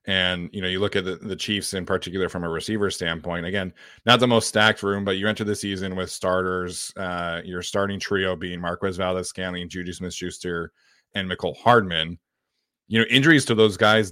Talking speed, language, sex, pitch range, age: 200 wpm, English, male, 90-110 Hz, 30-49